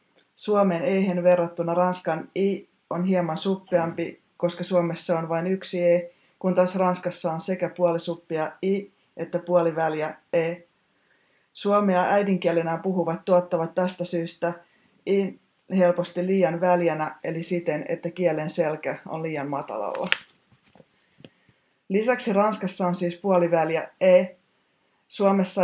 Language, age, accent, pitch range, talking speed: Finnish, 20-39, native, 165-185 Hz, 115 wpm